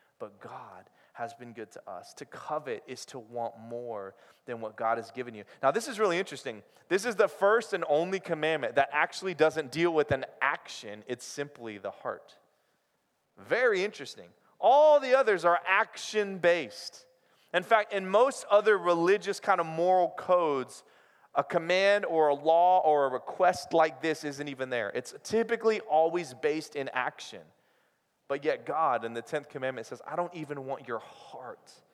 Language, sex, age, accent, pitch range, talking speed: English, male, 30-49, American, 125-180 Hz, 175 wpm